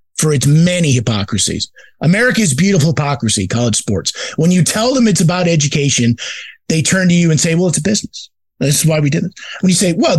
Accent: American